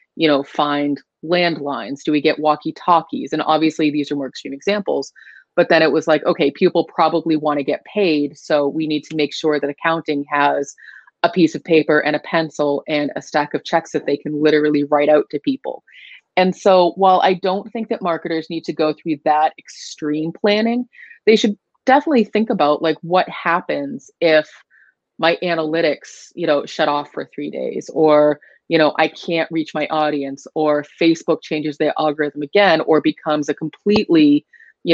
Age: 30-49